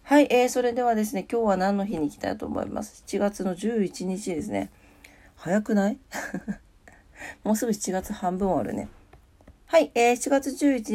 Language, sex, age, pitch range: Japanese, female, 40-59, 160-230 Hz